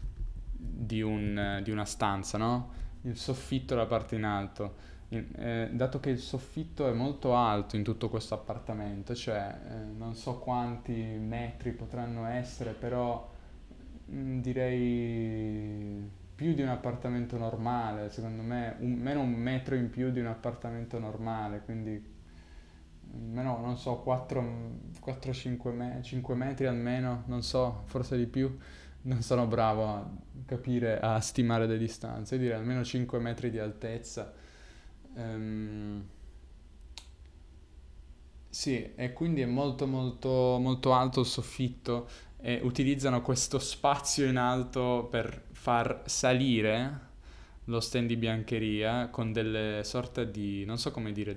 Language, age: Italian, 10-29